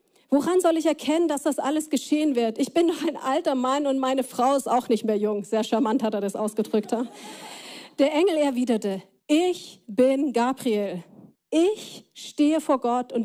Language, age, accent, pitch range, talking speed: German, 40-59, German, 210-265 Hz, 185 wpm